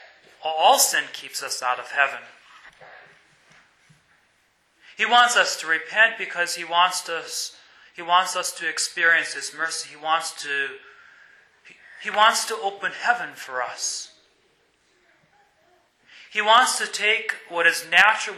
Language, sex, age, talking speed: English, male, 30-49, 130 wpm